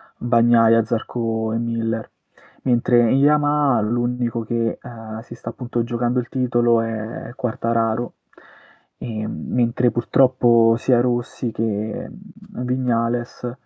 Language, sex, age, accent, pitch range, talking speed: Italian, male, 20-39, native, 115-125 Hz, 110 wpm